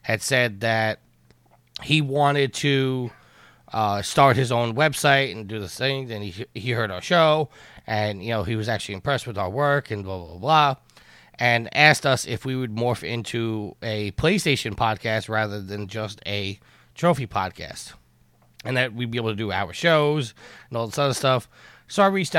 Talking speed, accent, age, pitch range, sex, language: 190 wpm, American, 30-49, 105-130 Hz, male, English